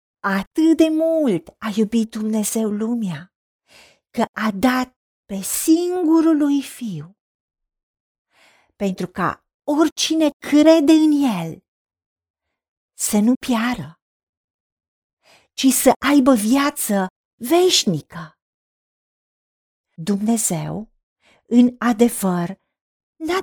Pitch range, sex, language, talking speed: 175-285 Hz, female, Romanian, 80 wpm